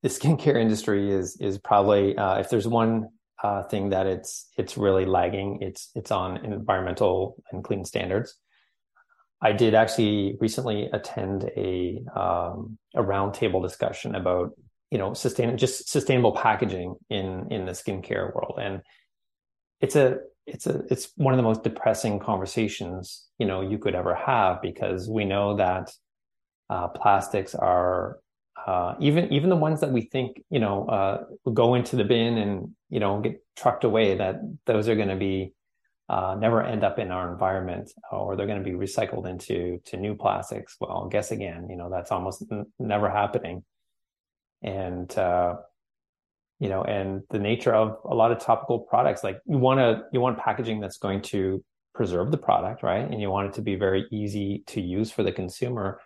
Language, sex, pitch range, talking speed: English, male, 95-115 Hz, 175 wpm